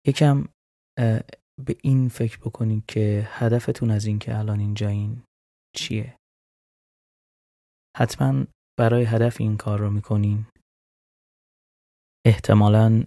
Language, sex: Persian, male